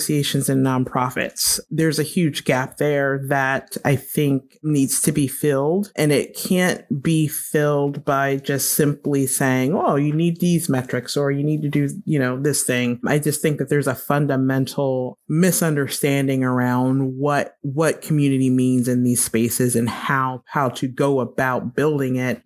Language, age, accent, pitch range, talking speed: English, 30-49, American, 125-150 Hz, 165 wpm